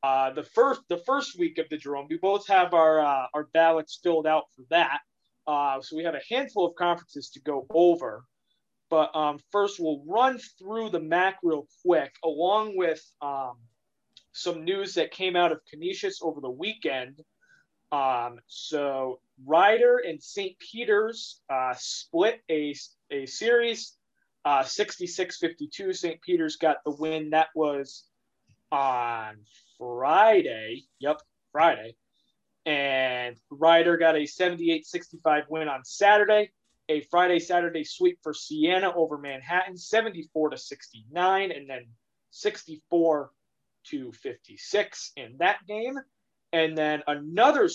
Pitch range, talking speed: 150-195 Hz, 140 wpm